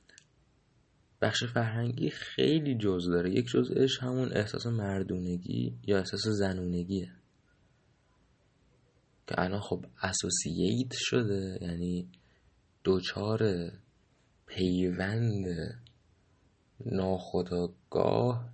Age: 30-49